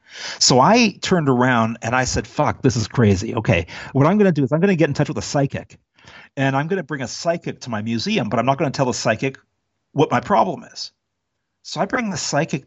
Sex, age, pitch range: male, 50-69, 110-145 Hz